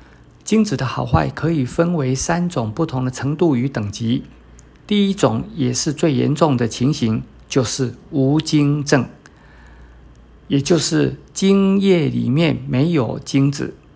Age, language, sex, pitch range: 50-69, Chinese, male, 120-160 Hz